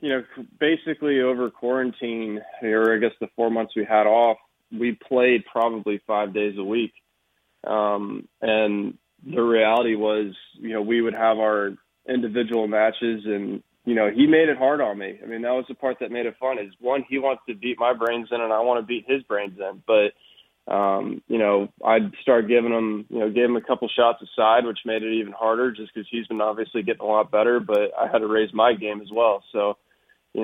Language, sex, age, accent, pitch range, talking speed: English, male, 20-39, American, 105-120 Hz, 220 wpm